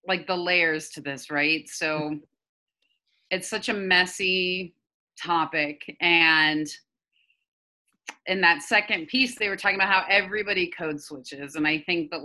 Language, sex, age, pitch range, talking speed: English, female, 30-49, 160-205 Hz, 140 wpm